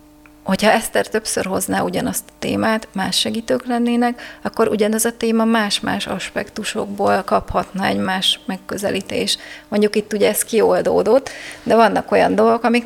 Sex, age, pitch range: female, 30-49, 195-225 Hz